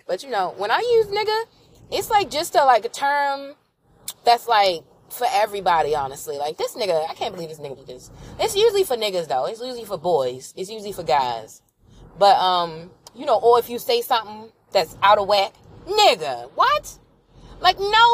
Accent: American